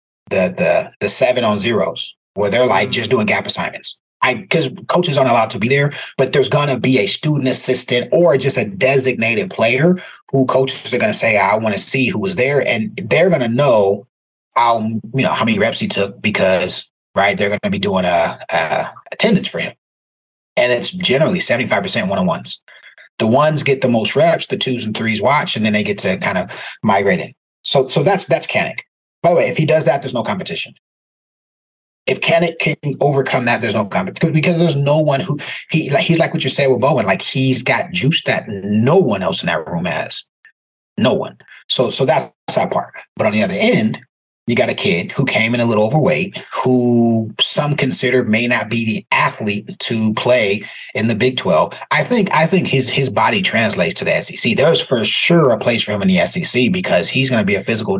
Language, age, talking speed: English, 30-49, 215 wpm